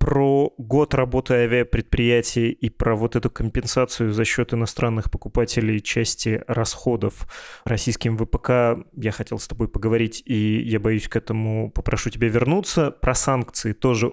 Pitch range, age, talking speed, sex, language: 110-125 Hz, 20-39, 140 wpm, male, Russian